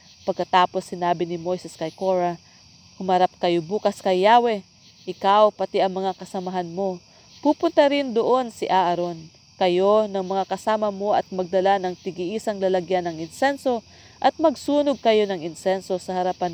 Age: 40-59